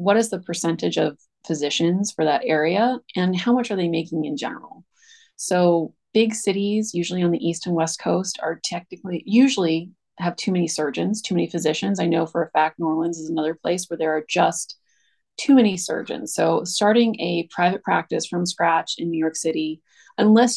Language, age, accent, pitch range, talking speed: English, 30-49, American, 165-205 Hz, 195 wpm